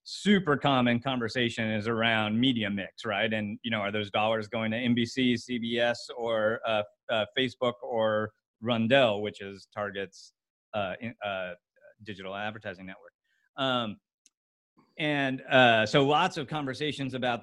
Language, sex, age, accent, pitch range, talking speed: English, male, 40-59, American, 115-145 Hz, 140 wpm